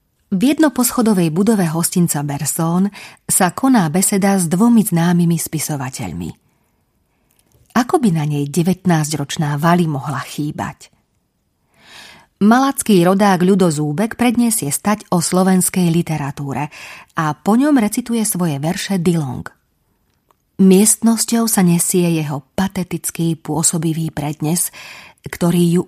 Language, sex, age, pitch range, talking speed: Slovak, female, 30-49, 155-195 Hz, 100 wpm